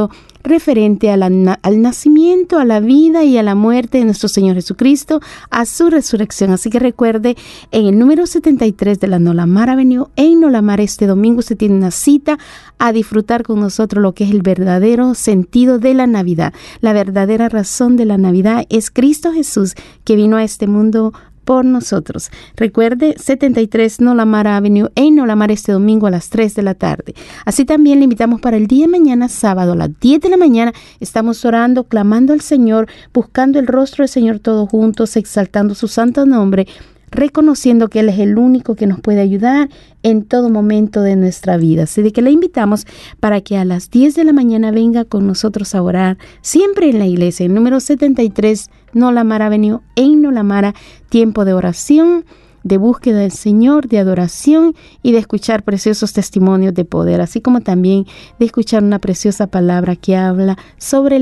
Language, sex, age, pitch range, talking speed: Spanish, female, 40-59, 205-255 Hz, 185 wpm